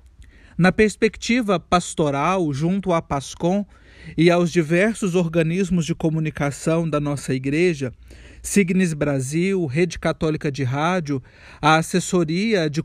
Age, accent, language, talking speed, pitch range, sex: 40-59, Brazilian, Portuguese, 110 wpm, 155-200 Hz, male